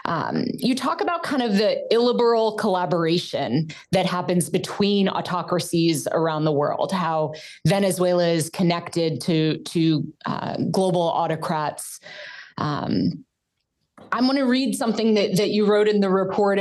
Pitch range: 180-220 Hz